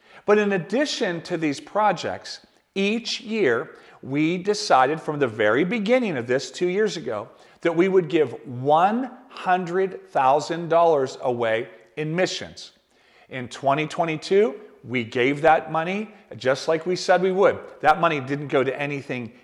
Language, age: English, 50-69